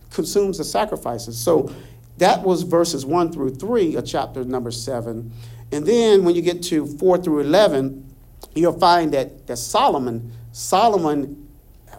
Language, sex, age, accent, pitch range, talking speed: English, male, 50-69, American, 125-185 Hz, 145 wpm